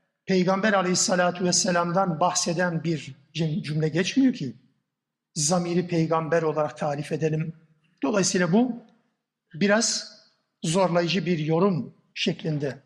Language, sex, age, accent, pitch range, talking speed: Turkish, male, 60-79, native, 175-225 Hz, 95 wpm